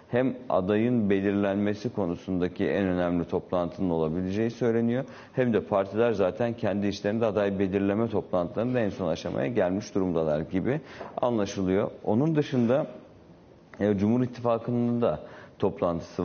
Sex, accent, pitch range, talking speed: male, native, 90-110 Hz, 115 wpm